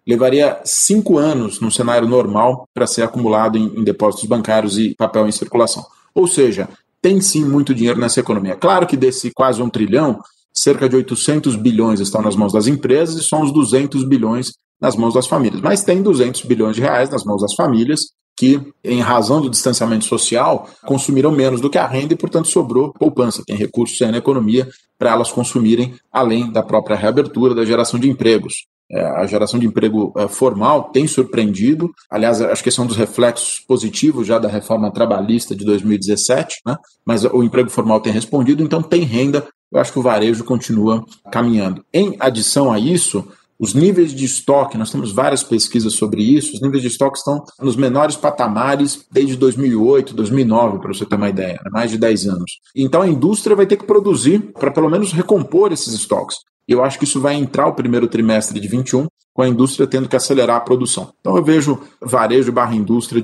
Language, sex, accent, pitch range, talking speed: Portuguese, male, Brazilian, 115-140 Hz, 190 wpm